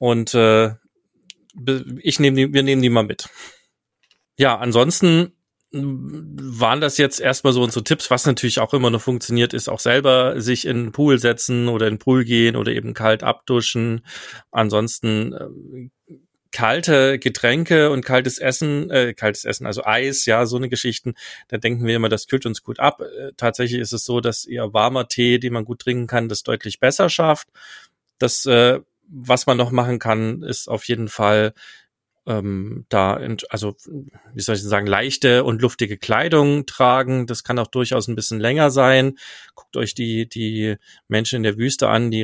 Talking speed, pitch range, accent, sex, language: 180 wpm, 110-130 Hz, German, male, German